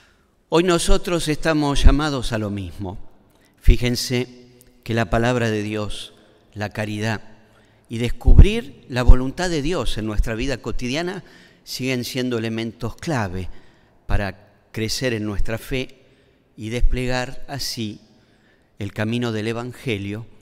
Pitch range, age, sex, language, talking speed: 105-130 Hz, 40-59, male, Spanish, 120 wpm